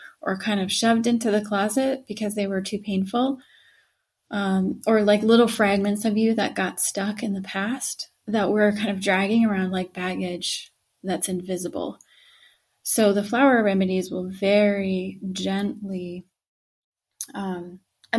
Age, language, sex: 30-49, English, female